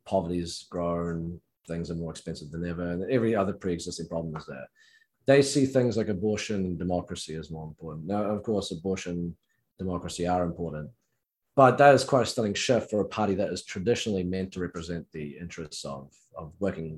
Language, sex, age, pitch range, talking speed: English, male, 30-49, 90-130 Hz, 195 wpm